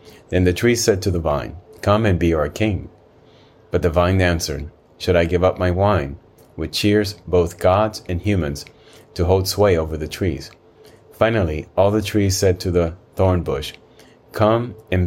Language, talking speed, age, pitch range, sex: English, 180 wpm, 30-49, 85-100 Hz, male